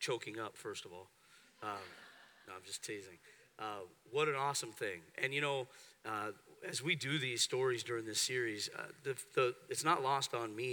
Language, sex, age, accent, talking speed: English, male, 40-59, American, 195 wpm